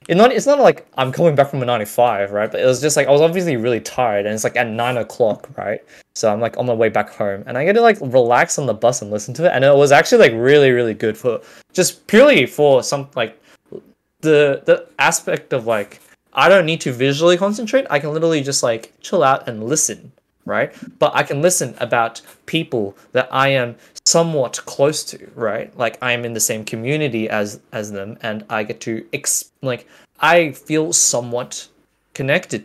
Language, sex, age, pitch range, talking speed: English, male, 20-39, 110-150 Hz, 210 wpm